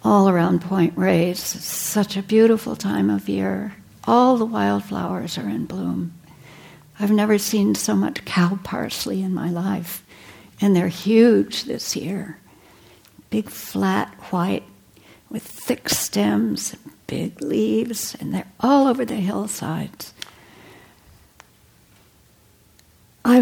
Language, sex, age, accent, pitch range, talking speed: English, female, 60-79, American, 170-225 Hz, 120 wpm